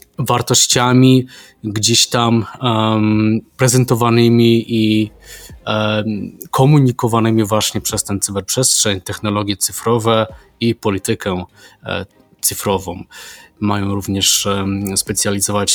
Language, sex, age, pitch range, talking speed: Polish, male, 20-39, 100-115 Hz, 70 wpm